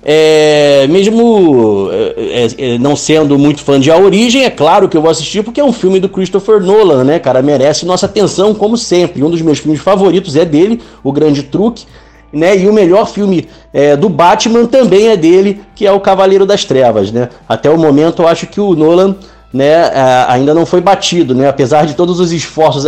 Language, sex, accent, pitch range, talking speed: Portuguese, male, Brazilian, 155-200 Hz, 200 wpm